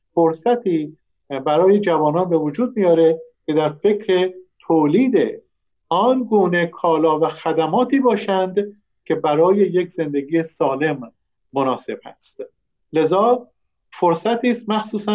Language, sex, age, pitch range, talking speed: Persian, male, 50-69, 155-205 Hz, 105 wpm